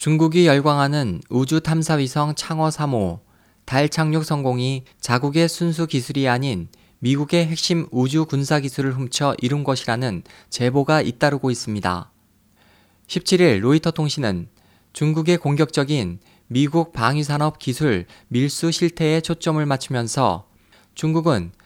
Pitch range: 120-155 Hz